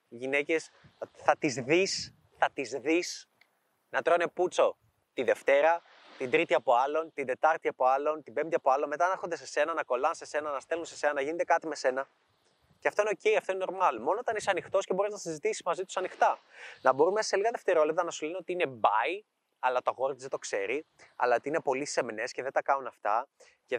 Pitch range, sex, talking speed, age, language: 150-215 Hz, male, 215 wpm, 20-39, Greek